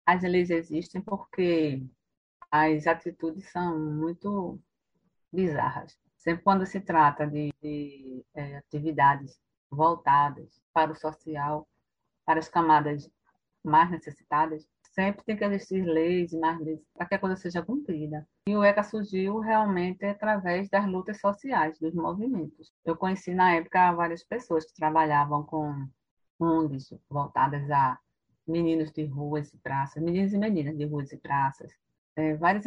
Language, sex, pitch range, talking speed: Portuguese, female, 150-185 Hz, 140 wpm